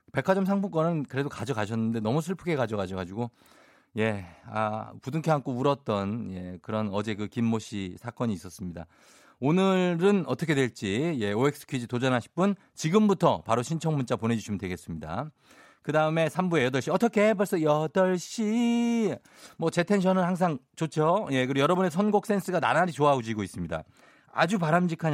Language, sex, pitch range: Korean, male, 115-175 Hz